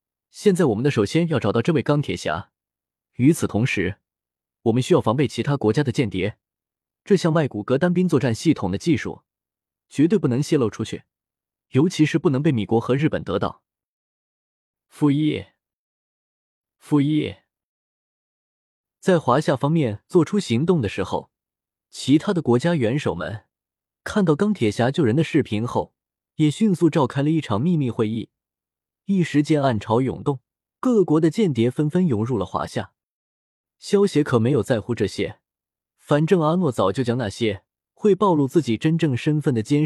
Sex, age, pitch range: male, 20-39, 115-165 Hz